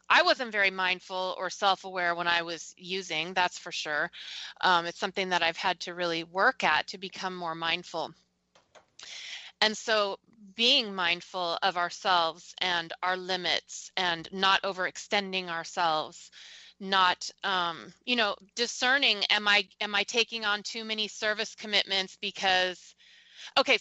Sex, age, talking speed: female, 30-49, 140 wpm